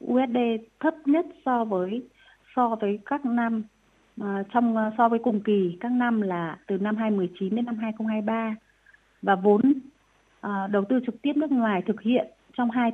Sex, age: female, 20-39